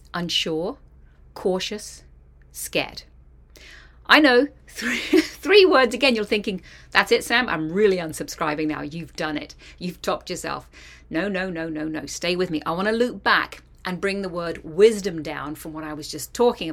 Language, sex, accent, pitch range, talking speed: English, female, British, 150-200 Hz, 170 wpm